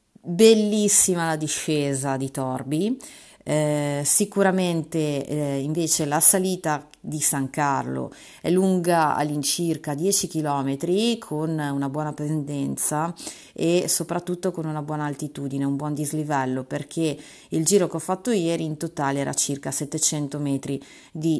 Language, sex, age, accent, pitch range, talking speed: Italian, female, 30-49, native, 145-180 Hz, 125 wpm